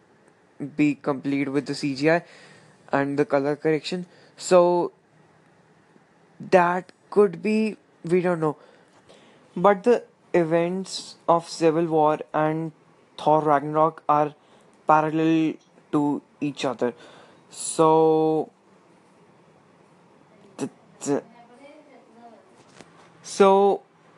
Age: 20-39